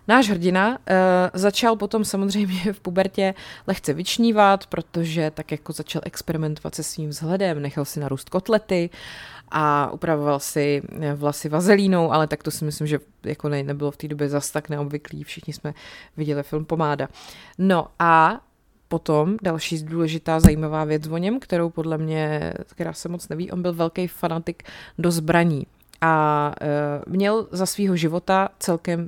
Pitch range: 155-185 Hz